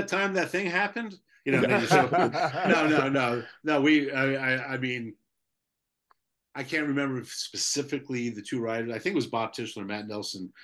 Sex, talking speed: male, 185 wpm